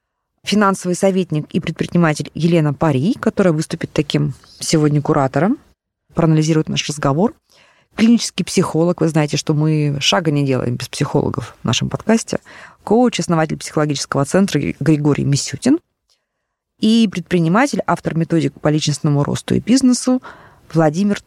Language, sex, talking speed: Russian, female, 125 wpm